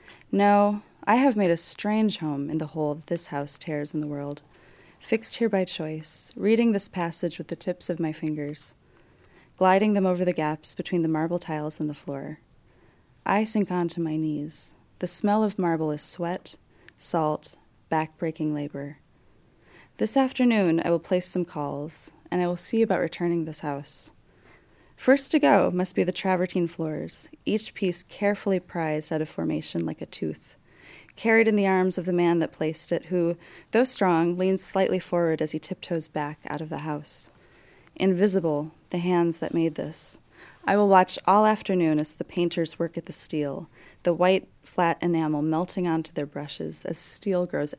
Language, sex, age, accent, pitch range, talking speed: English, female, 20-39, American, 155-190 Hz, 180 wpm